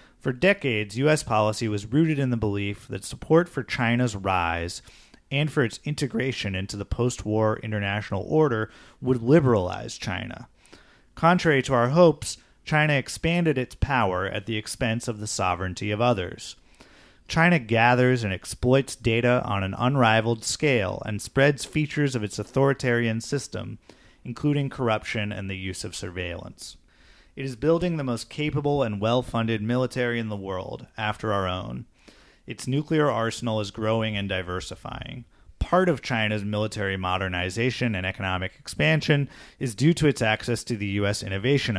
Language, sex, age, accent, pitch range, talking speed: English, male, 30-49, American, 100-130 Hz, 150 wpm